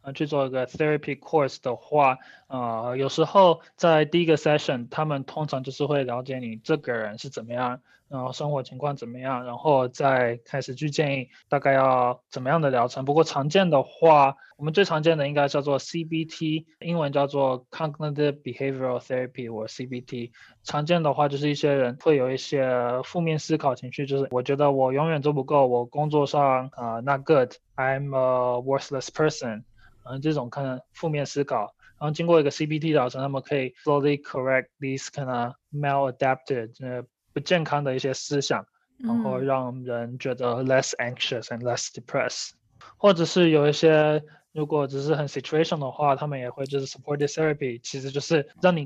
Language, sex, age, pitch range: Chinese, male, 20-39, 130-155 Hz